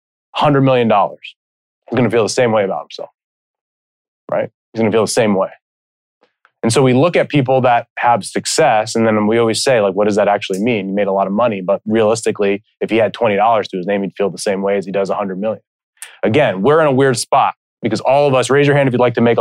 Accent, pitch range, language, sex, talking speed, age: American, 110-135 Hz, English, male, 255 wpm, 20-39